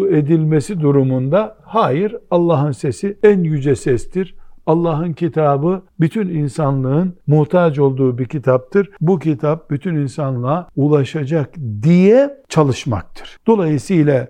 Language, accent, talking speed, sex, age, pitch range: Turkish, native, 100 wpm, male, 60-79, 125-170 Hz